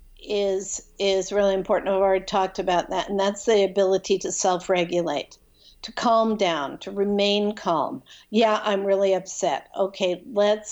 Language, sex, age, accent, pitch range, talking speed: English, female, 50-69, American, 185-225 Hz, 155 wpm